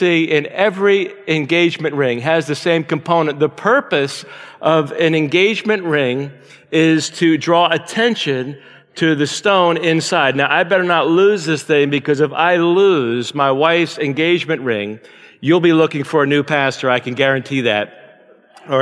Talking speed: 155 wpm